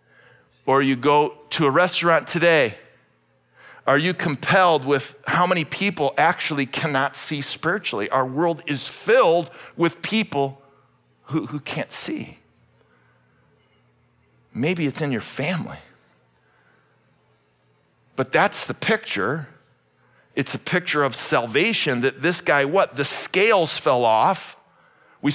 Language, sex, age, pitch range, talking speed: English, male, 50-69, 145-210 Hz, 120 wpm